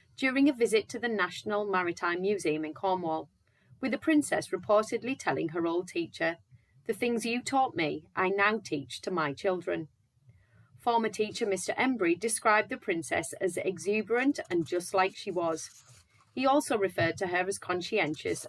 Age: 30-49